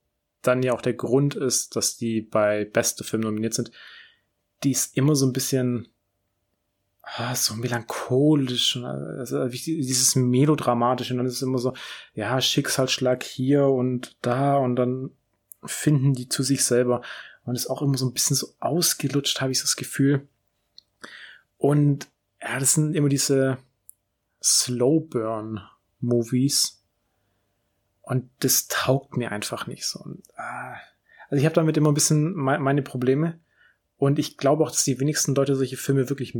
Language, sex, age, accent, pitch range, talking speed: German, male, 30-49, German, 115-140 Hz, 150 wpm